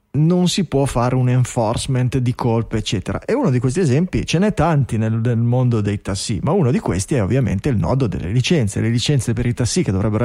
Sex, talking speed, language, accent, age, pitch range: male, 230 wpm, Italian, native, 30-49, 120-175 Hz